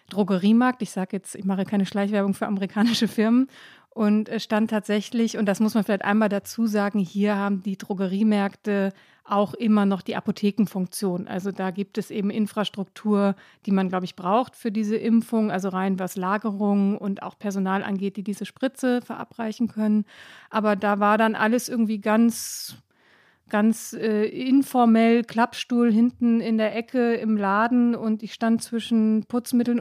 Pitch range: 205-230 Hz